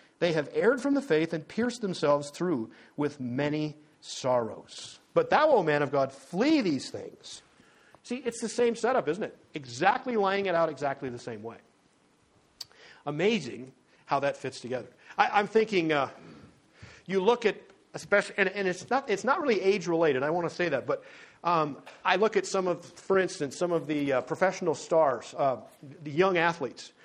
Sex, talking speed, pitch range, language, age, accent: male, 180 wpm, 145-210 Hz, English, 50-69, American